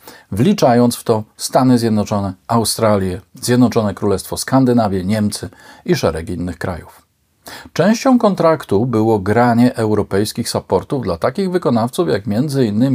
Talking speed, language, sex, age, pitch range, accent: 115 wpm, Polish, male, 40-59, 105-150 Hz, native